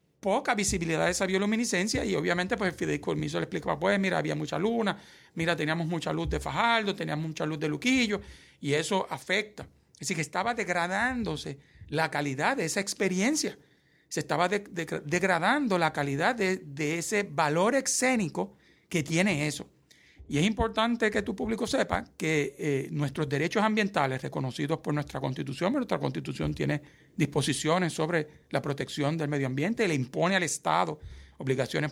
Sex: male